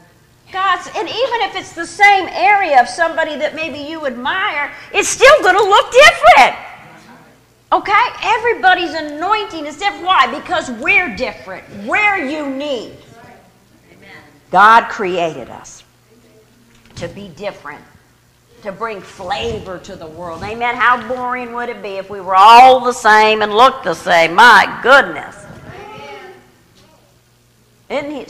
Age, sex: 50-69, female